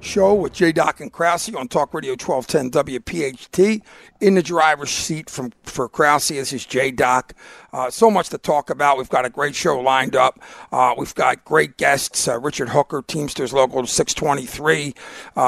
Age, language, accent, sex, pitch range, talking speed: 50-69, English, American, male, 130-155 Hz, 180 wpm